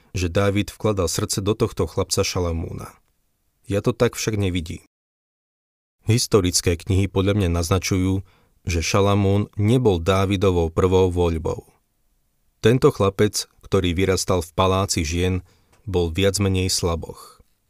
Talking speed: 120 wpm